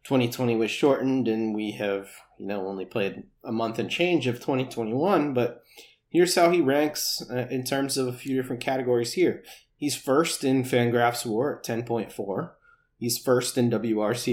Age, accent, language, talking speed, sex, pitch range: 30-49, American, English, 170 wpm, male, 115-140 Hz